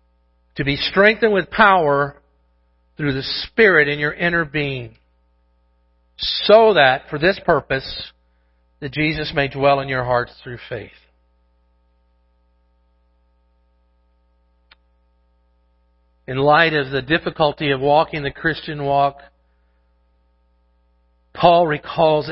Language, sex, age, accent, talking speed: English, male, 50-69, American, 100 wpm